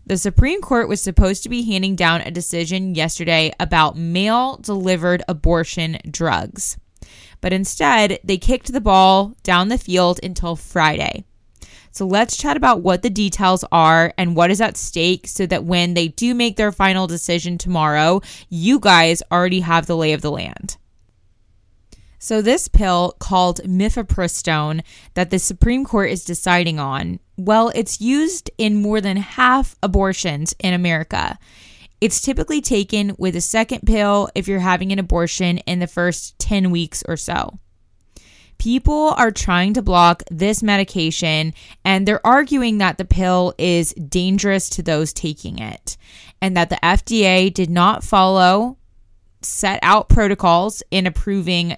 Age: 20-39